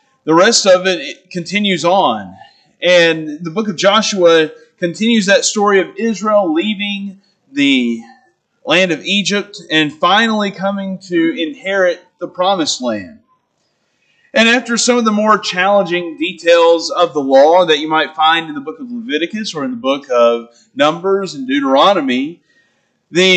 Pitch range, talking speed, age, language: 175-255 Hz, 150 wpm, 30-49, English